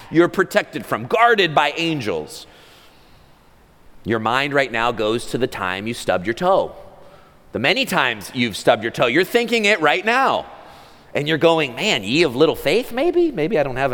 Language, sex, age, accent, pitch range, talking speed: English, male, 40-59, American, 125-195 Hz, 185 wpm